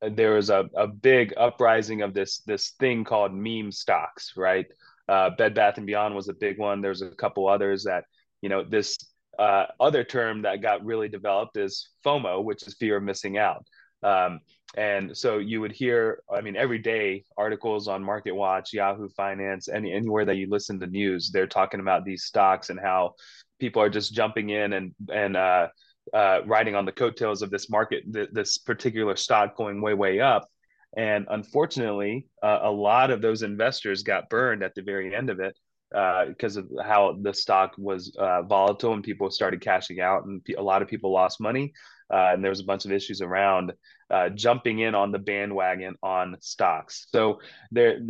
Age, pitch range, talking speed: 20-39, 100-115 Hz, 190 wpm